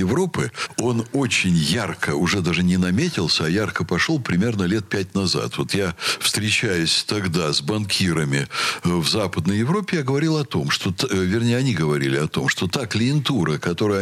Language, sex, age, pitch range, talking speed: Russian, male, 60-79, 90-145 Hz, 165 wpm